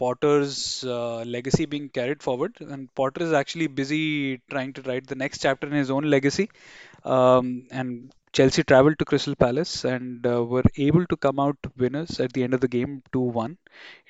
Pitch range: 125-145 Hz